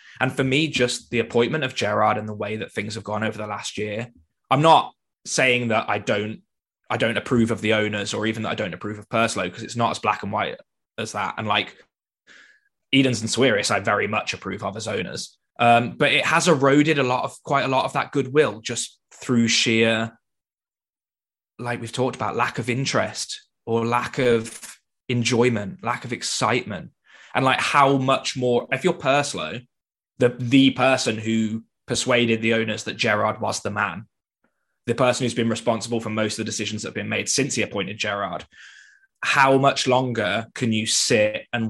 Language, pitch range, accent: English, 105-125 Hz, British